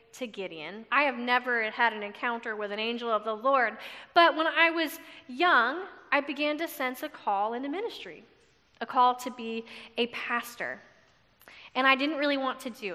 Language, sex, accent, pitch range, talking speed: English, female, American, 255-320 Hz, 190 wpm